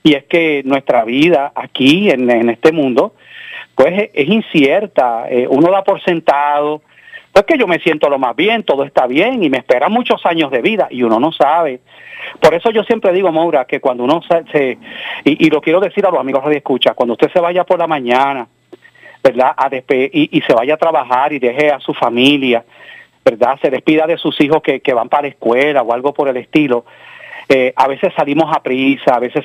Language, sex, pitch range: Spanish, male, 130-170 Hz